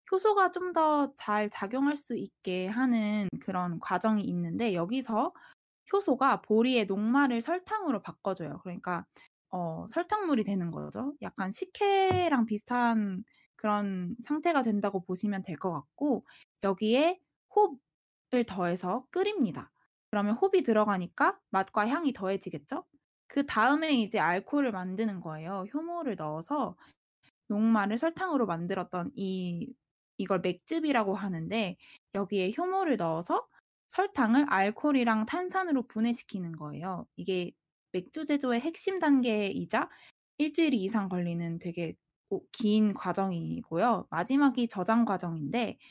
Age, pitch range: 20-39, 190-280 Hz